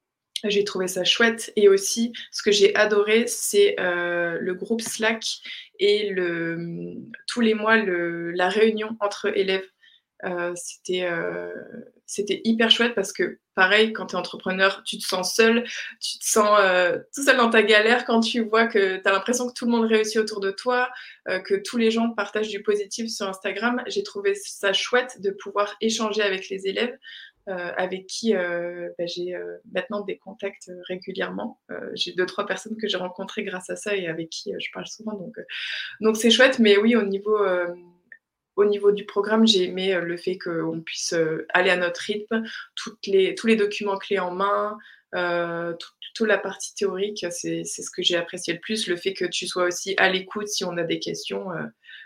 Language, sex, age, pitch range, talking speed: French, female, 20-39, 180-225 Hz, 200 wpm